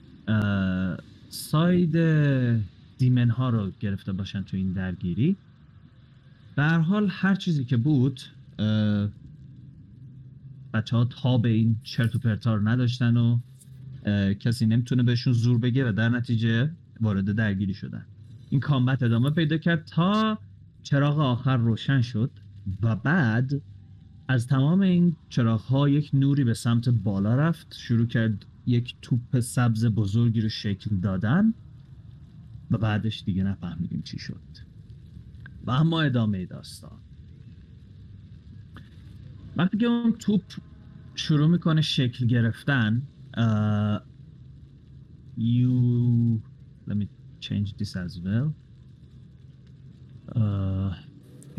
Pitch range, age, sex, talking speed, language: 105-135 Hz, 30-49, male, 110 wpm, Persian